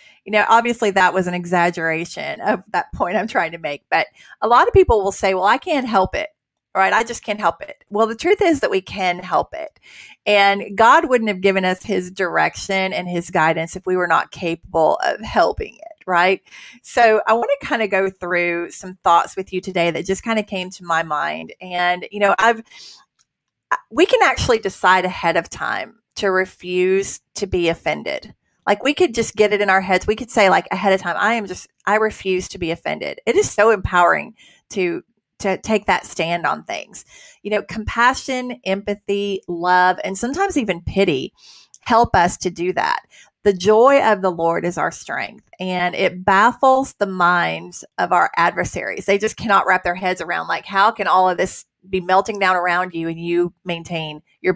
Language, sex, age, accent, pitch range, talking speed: English, female, 30-49, American, 180-215 Hz, 205 wpm